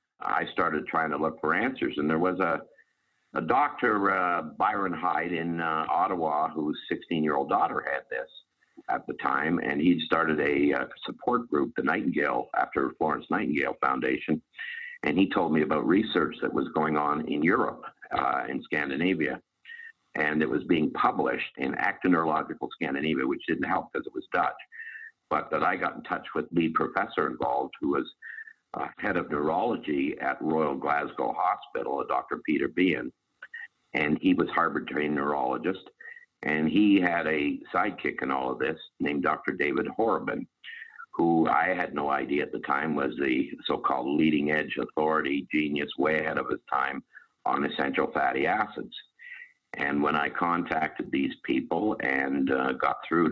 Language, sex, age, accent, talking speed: English, male, 50-69, American, 165 wpm